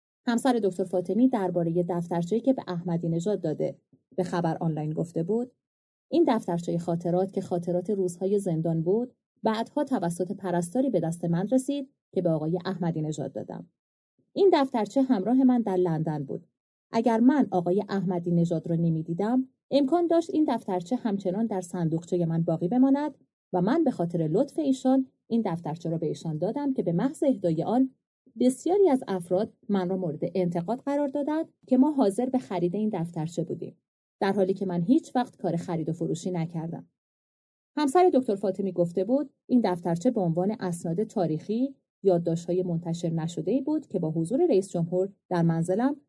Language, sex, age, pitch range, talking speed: Persian, female, 30-49, 170-255 Hz, 165 wpm